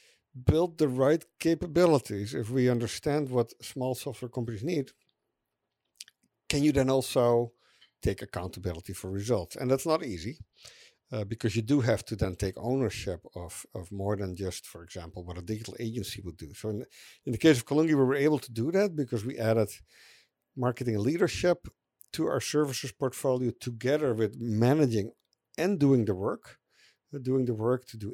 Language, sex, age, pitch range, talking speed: English, male, 50-69, 110-140 Hz, 170 wpm